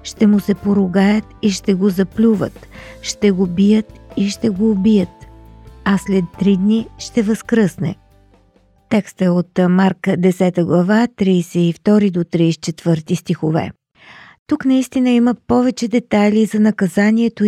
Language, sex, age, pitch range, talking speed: Bulgarian, female, 50-69, 180-220 Hz, 130 wpm